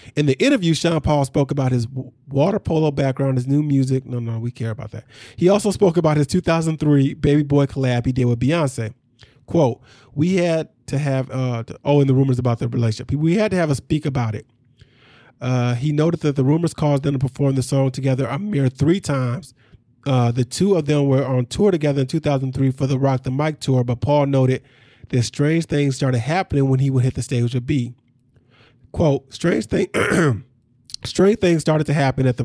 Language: English